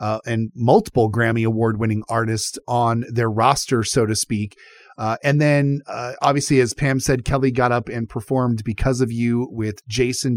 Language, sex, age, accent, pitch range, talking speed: English, male, 30-49, American, 120-145 Hz, 180 wpm